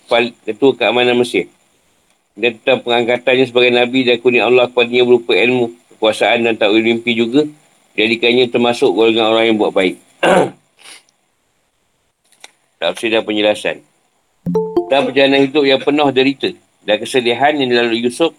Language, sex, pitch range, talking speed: Malay, male, 115-130 Hz, 130 wpm